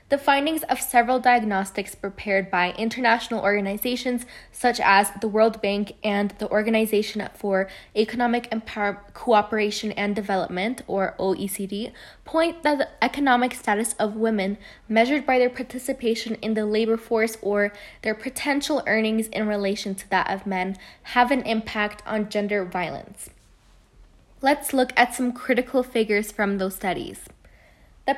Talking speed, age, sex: 140 wpm, 10-29, female